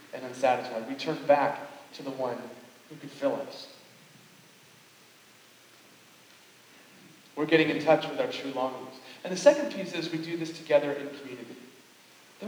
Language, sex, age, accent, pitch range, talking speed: English, male, 40-59, American, 140-190 Hz, 155 wpm